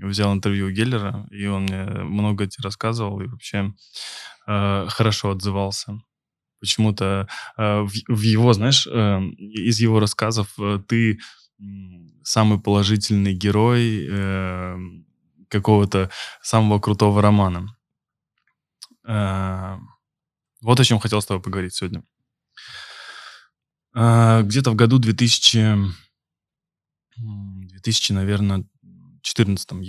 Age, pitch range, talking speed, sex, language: 10-29, 95-115 Hz, 100 wpm, male, Russian